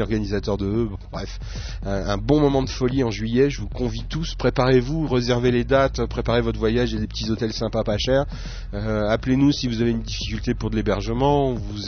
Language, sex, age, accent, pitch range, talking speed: French, male, 30-49, French, 105-130 Hz, 200 wpm